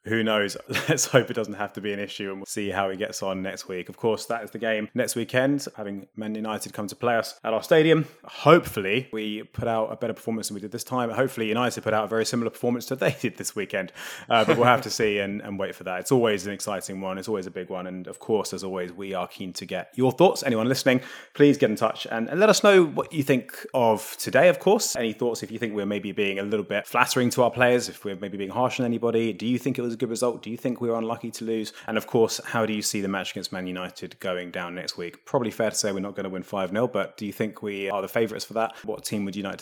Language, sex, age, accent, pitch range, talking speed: English, male, 20-39, British, 100-120 Hz, 290 wpm